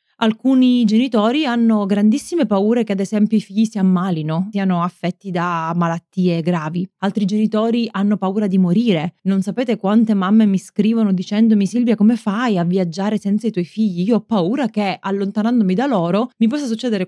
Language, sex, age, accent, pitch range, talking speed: Italian, female, 20-39, native, 185-230 Hz, 170 wpm